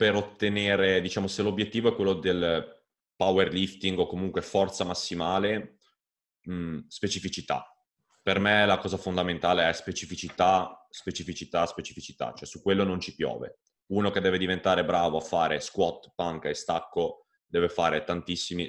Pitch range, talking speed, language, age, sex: 85-95 Hz, 140 wpm, Italian, 20-39, male